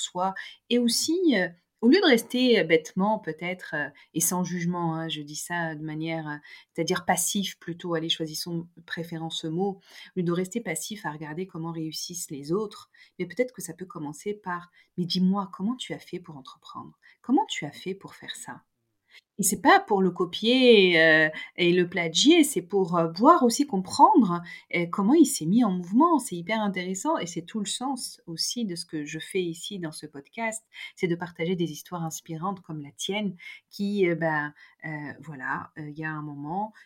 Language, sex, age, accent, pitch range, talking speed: French, female, 40-59, French, 160-210 Hz, 200 wpm